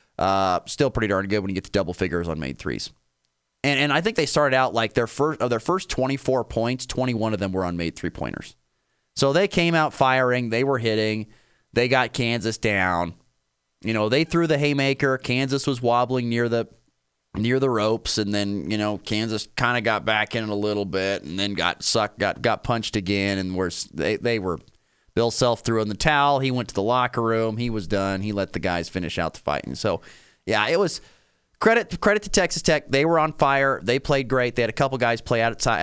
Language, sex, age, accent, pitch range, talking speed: English, male, 30-49, American, 100-135 Hz, 225 wpm